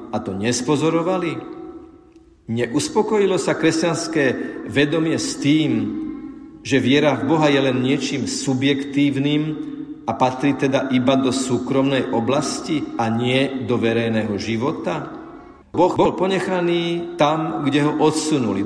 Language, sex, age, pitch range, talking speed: Slovak, male, 50-69, 130-175 Hz, 115 wpm